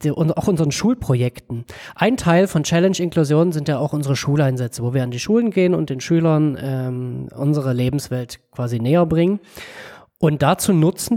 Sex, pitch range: male, 135-175 Hz